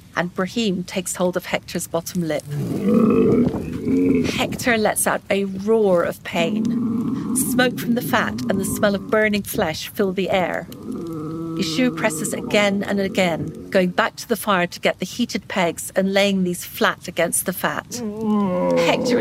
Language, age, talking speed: English, 50-69, 160 wpm